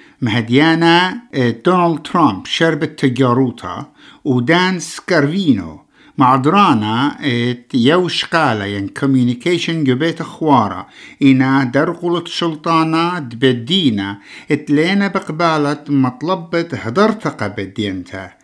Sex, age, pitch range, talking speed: male, 60-79, 125-170 Hz, 70 wpm